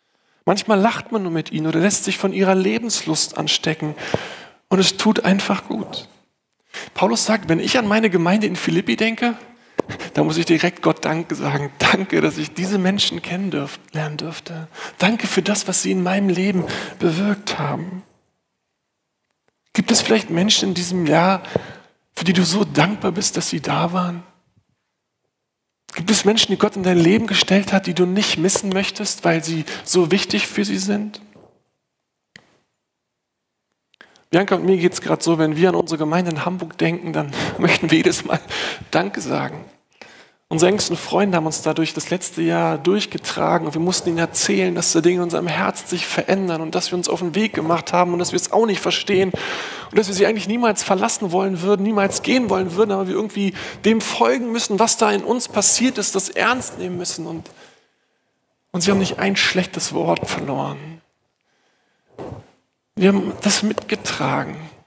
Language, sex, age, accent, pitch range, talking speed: German, male, 40-59, German, 170-205 Hz, 180 wpm